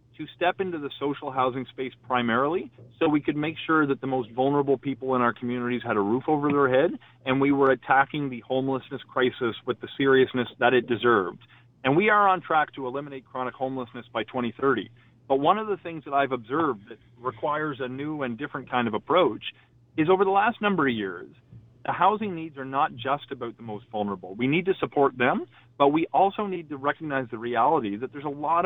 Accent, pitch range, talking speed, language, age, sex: American, 120-150 Hz, 210 wpm, English, 40-59, male